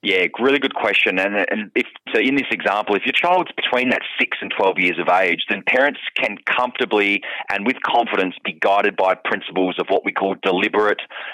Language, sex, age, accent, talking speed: English, male, 20-39, Australian, 200 wpm